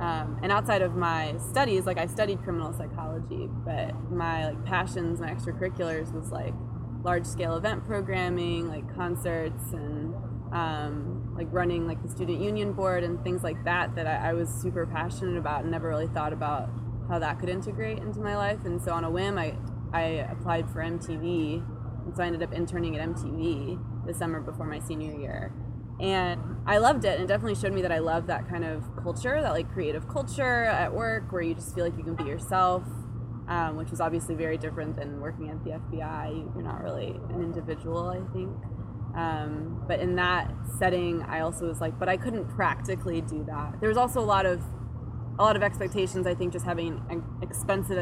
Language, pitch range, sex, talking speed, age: English, 115-165 Hz, female, 195 wpm, 20-39